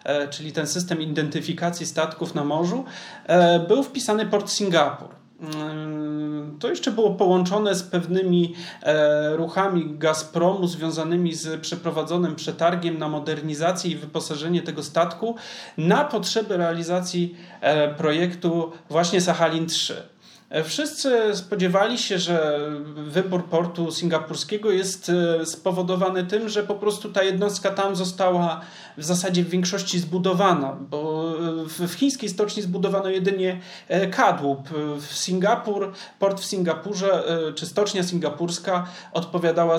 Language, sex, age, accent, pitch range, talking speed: Polish, male, 40-59, native, 160-190 Hz, 110 wpm